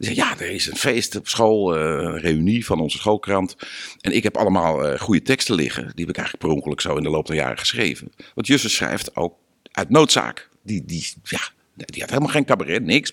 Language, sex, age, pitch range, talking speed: Dutch, male, 50-69, 80-110 Hz, 205 wpm